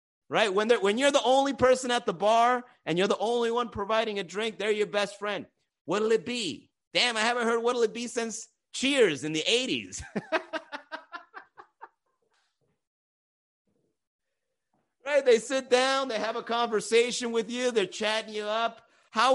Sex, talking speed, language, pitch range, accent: male, 165 wpm, English, 220-300 Hz, American